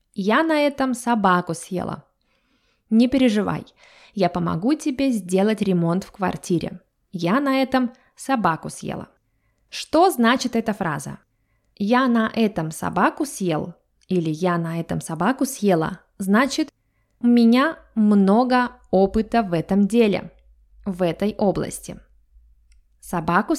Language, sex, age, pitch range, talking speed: Russian, female, 20-39, 175-250 Hz, 115 wpm